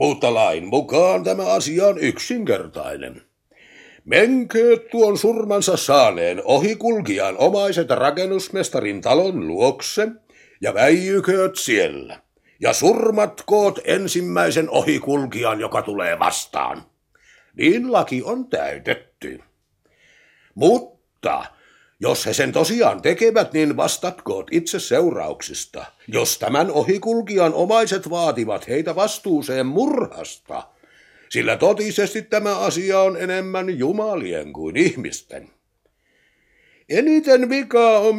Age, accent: 60-79, native